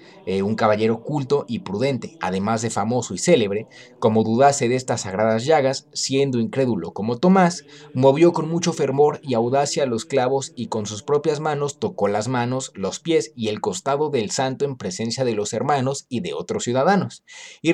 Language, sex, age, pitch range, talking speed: Spanish, male, 30-49, 115-155 Hz, 185 wpm